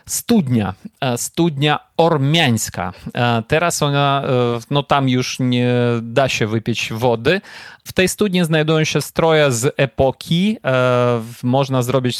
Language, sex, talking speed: Polish, male, 115 wpm